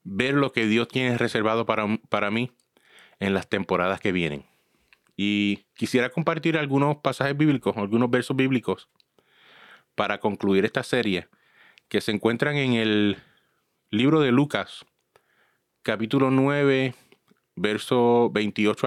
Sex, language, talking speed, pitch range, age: male, Spanish, 125 wpm, 105-135 Hz, 30-49